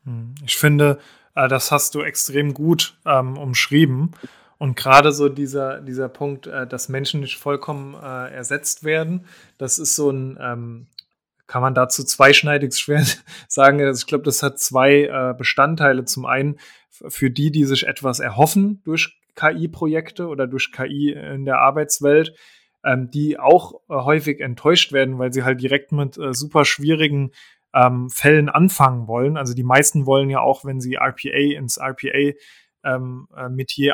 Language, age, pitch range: German, 20-39, 130-150 Hz